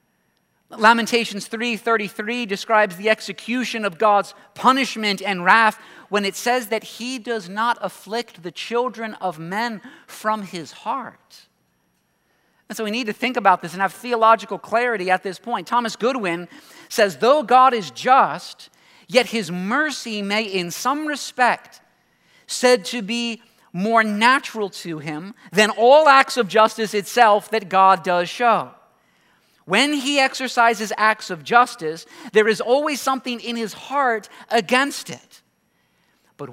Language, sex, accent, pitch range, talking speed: English, male, American, 200-240 Hz, 145 wpm